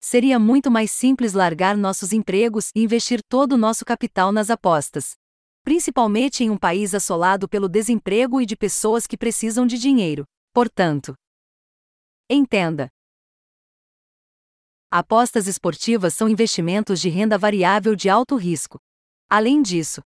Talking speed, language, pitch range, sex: 130 wpm, Portuguese, 180-235 Hz, female